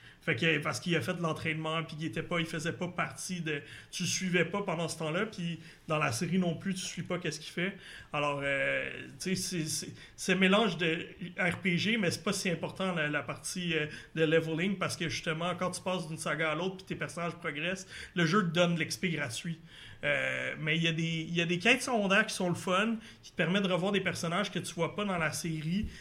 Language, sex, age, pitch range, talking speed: French, male, 30-49, 155-180 Hz, 250 wpm